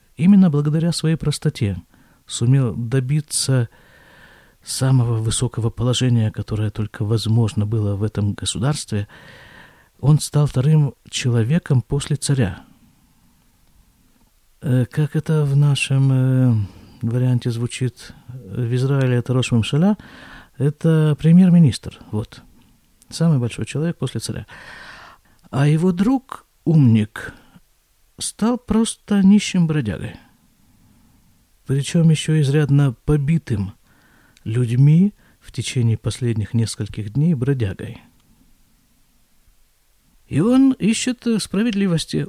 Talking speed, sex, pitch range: 90 wpm, male, 115-155 Hz